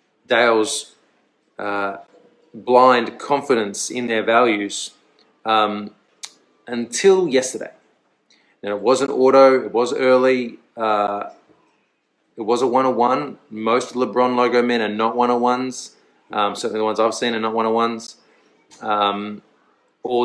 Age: 20-39